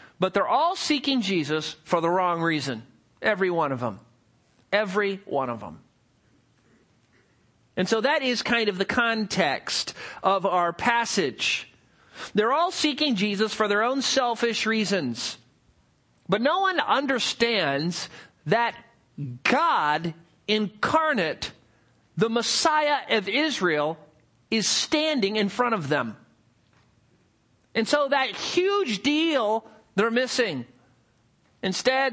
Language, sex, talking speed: English, male, 115 wpm